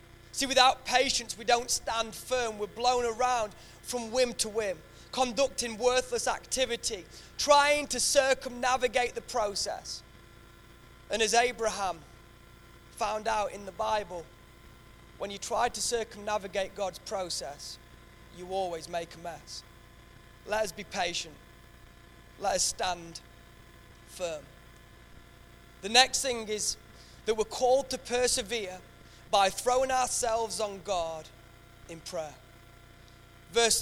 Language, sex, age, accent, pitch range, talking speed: English, male, 20-39, British, 185-260 Hz, 120 wpm